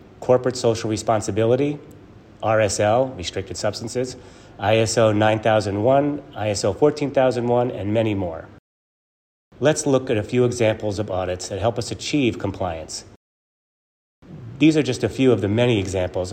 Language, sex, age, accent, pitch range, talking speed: English, male, 30-49, American, 100-115 Hz, 130 wpm